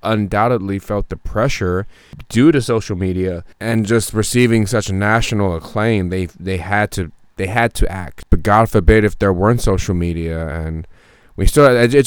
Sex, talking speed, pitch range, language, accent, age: male, 170 wpm, 90-110 Hz, English, American, 20-39